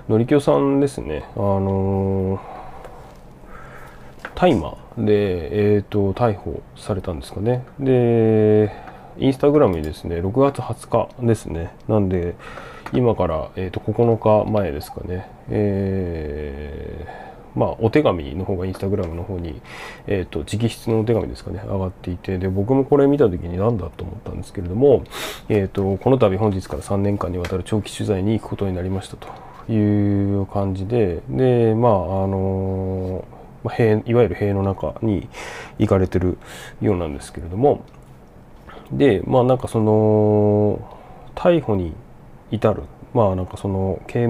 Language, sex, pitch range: Japanese, male, 95-110 Hz